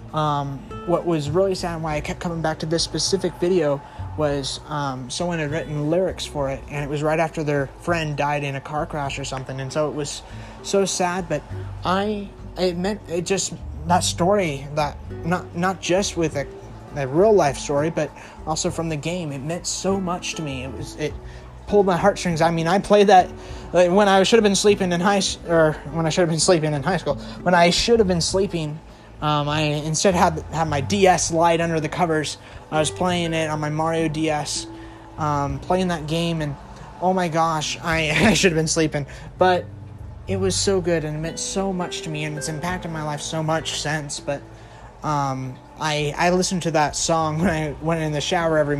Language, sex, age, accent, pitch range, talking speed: English, male, 20-39, American, 140-175 Hz, 220 wpm